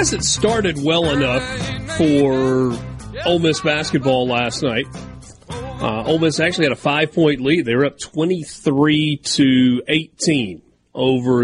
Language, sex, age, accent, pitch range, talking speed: English, male, 30-49, American, 120-155 Hz, 130 wpm